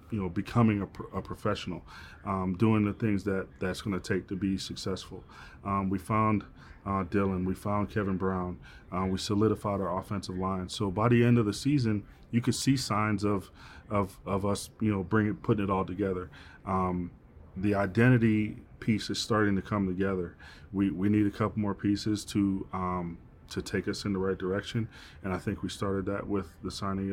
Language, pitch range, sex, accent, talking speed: English, 95-105 Hz, male, American, 200 wpm